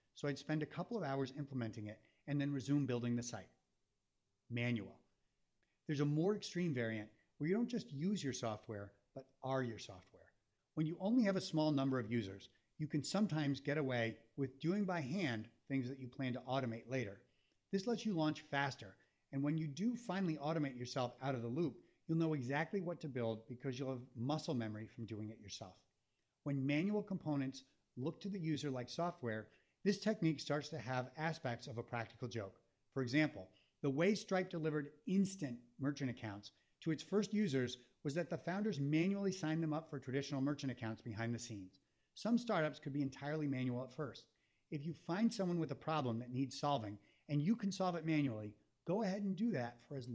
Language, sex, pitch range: English, male, 120-160 Hz